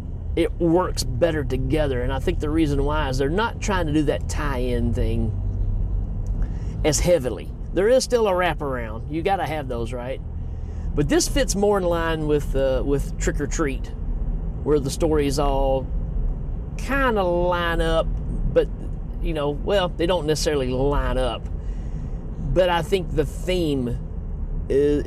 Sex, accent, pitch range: male, American, 100-165 Hz